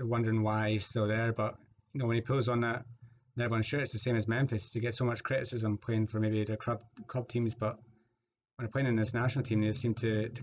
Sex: male